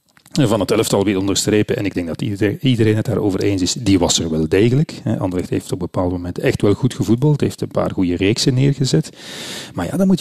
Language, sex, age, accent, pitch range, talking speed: Dutch, male, 40-59, Dutch, 105-135 Hz, 230 wpm